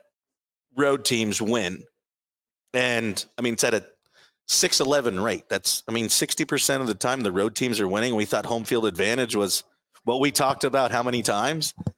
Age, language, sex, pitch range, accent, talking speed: 40-59, English, male, 110-140 Hz, American, 185 wpm